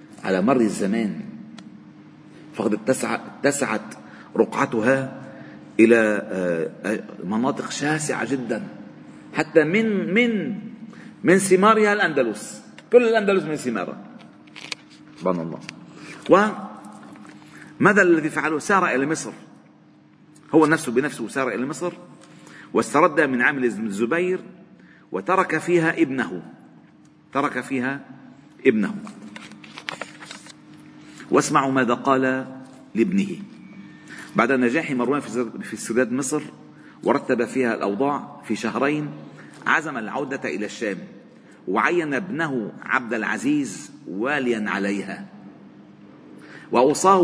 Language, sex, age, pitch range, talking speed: Arabic, male, 50-69, 120-170 Hz, 90 wpm